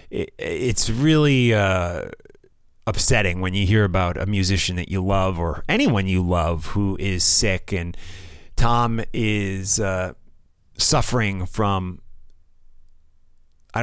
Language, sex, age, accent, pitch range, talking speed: English, male, 30-49, American, 80-105 Hz, 115 wpm